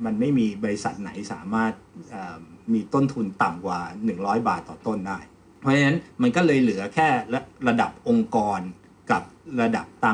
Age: 60-79